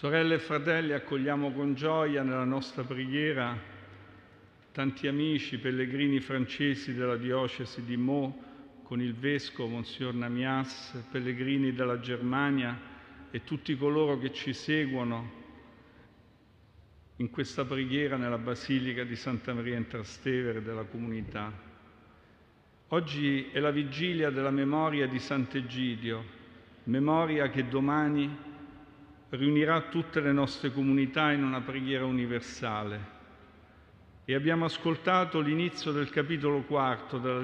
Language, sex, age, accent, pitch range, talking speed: Italian, male, 50-69, native, 125-150 Hz, 115 wpm